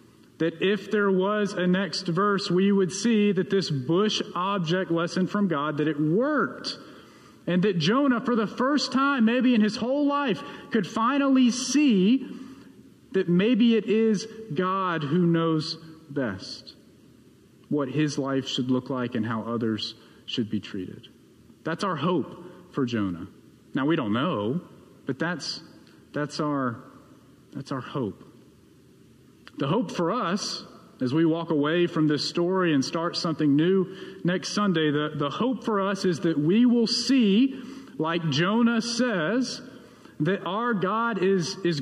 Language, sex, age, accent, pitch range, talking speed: English, male, 40-59, American, 165-235 Hz, 150 wpm